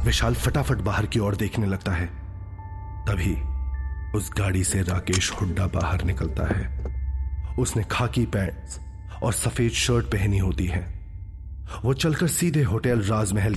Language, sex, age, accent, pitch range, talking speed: Hindi, male, 30-49, native, 90-110 Hz, 135 wpm